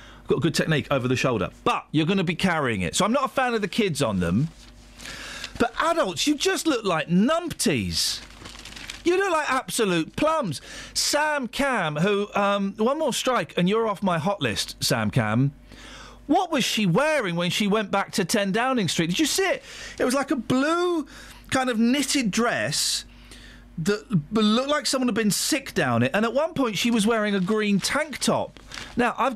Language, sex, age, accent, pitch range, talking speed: English, male, 40-59, British, 155-245 Hz, 195 wpm